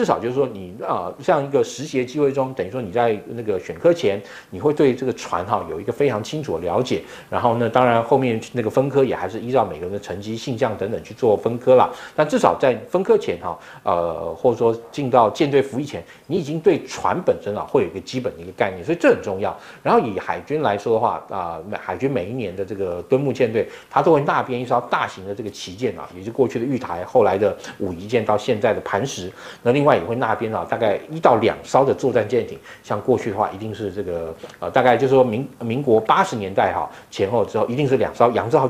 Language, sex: Chinese, male